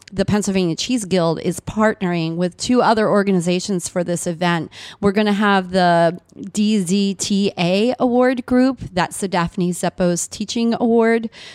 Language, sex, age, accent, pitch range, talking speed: English, female, 30-49, American, 180-215 Hz, 140 wpm